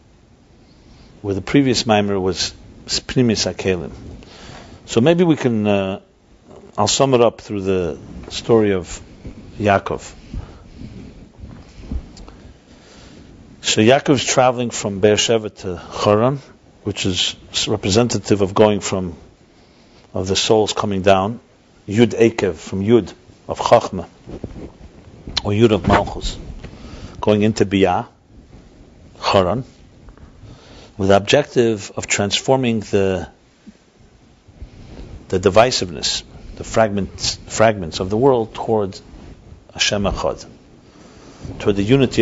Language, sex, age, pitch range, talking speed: English, male, 50-69, 95-115 Hz, 105 wpm